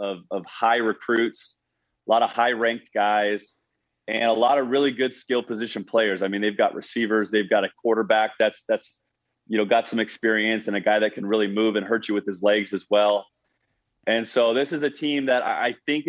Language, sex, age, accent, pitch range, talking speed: English, male, 30-49, American, 105-135 Hz, 220 wpm